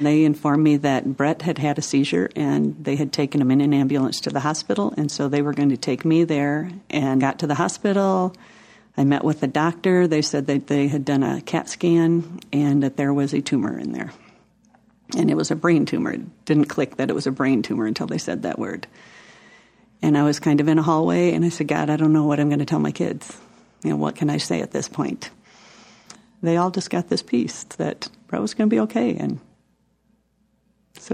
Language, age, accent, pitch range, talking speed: English, 50-69, American, 145-180 Hz, 235 wpm